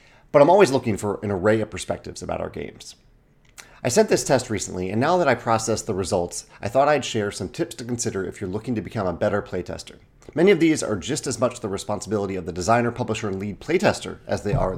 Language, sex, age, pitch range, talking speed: English, male, 30-49, 95-135 Hz, 240 wpm